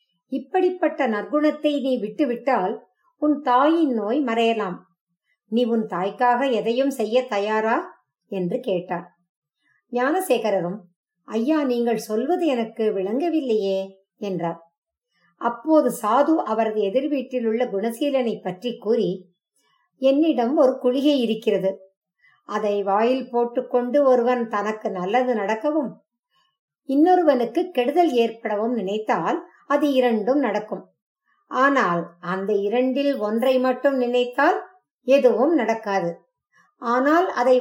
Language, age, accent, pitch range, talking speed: English, 50-69, Indian, 210-275 Hz, 85 wpm